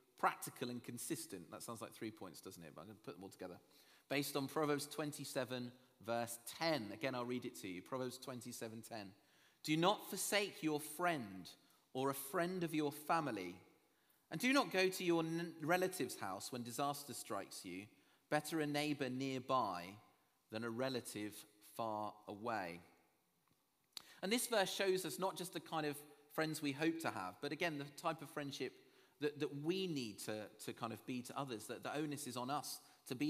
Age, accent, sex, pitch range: 30-49, British, male, 110-155 Hz